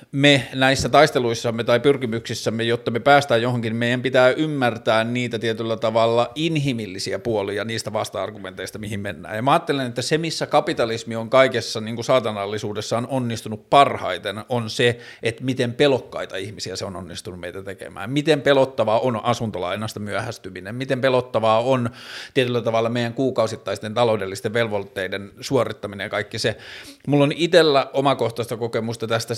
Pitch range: 110-125 Hz